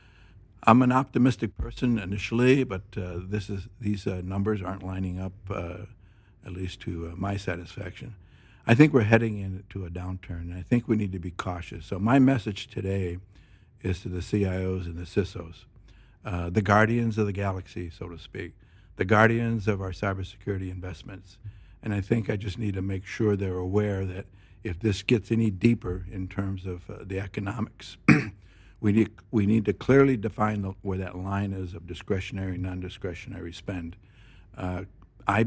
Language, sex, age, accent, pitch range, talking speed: English, male, 60-79, American, 95-110 Hz, 175 wpm